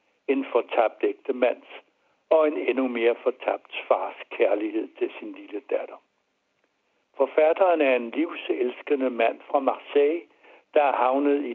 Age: 60-79